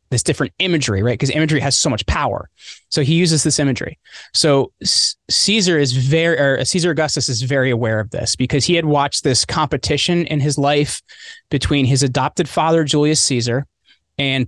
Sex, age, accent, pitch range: male, 20-39, American, 125-160 Hz